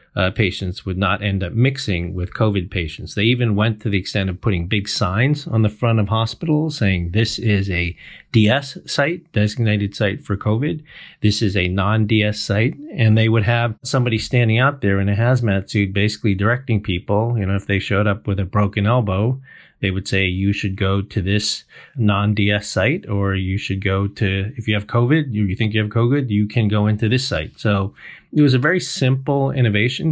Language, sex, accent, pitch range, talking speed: English, male, American, 95-115 Hz, 205 wpm